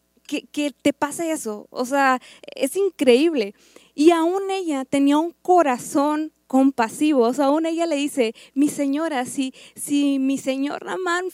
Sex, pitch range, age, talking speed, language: female, 240-295 Hz, 20-39, 155 wpm, Spanish